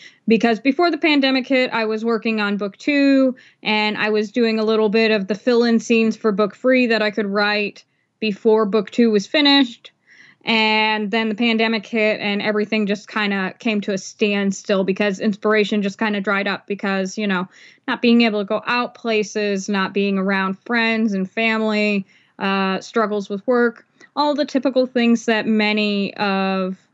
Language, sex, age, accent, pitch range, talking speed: English, female, 10-29, American, 205-230 Hz, 185 wpm